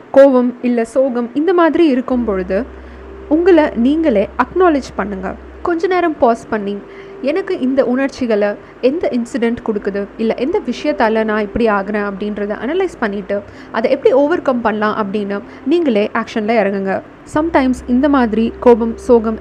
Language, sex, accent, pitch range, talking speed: Tamil, female, native, 210-275 Hz, 135 wpm